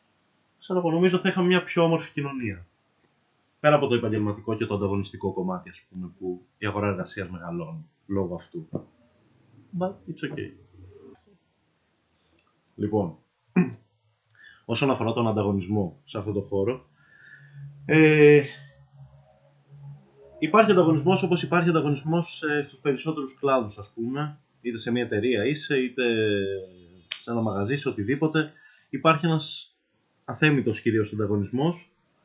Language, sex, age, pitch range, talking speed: Greek, male, 20-39, 110-150 Hz, 115 wpm